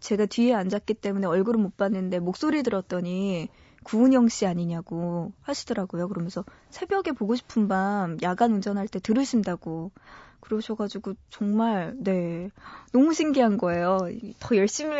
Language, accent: Korean, native